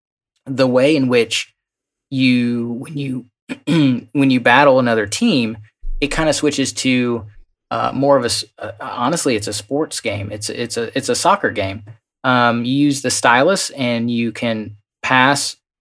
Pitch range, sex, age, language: 115-140 Hz, male, 20-39, English